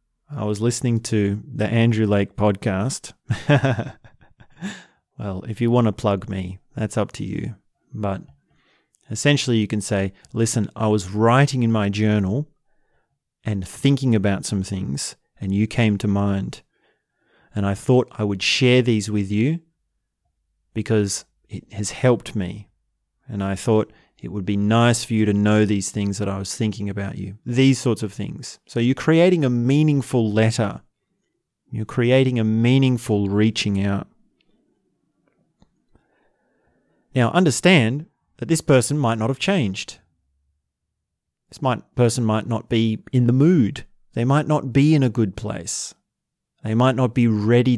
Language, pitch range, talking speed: English, 100-125 Hz, 150 wpm